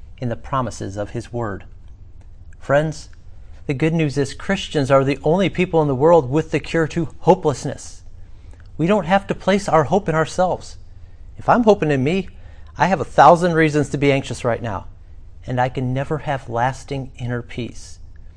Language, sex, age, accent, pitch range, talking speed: English, male, 40-59, American, 95-140 Hz, 185 wpm